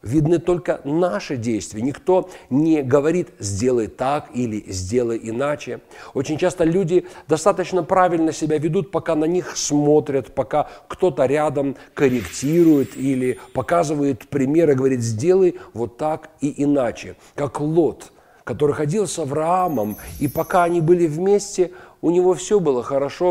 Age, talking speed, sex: 40-59, 135 wpm, male